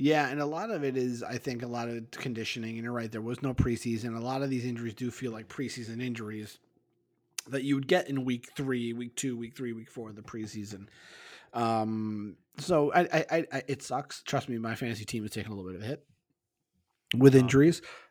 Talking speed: 225 wpm